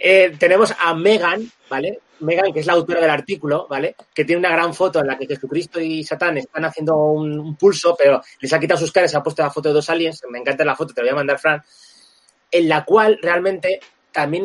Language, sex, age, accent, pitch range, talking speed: Spanish, male, 30-49, Spanish, 150-195 Hz, 240 wpm